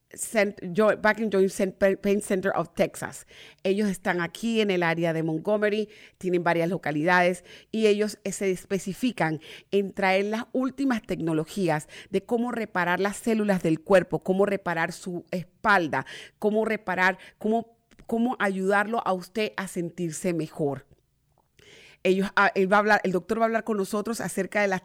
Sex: female